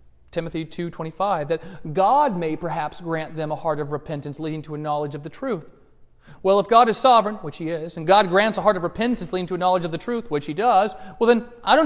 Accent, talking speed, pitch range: American, 245 wpm, 145-205 Hz